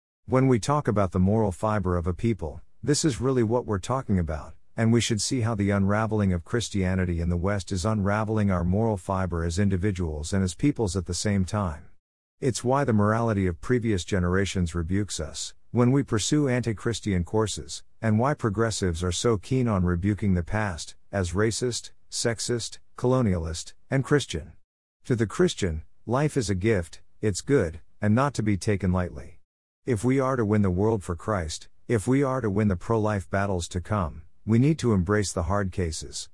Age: 50-69